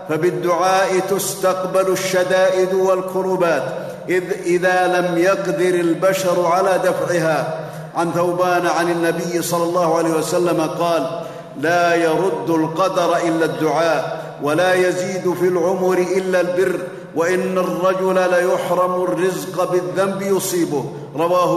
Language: Arabic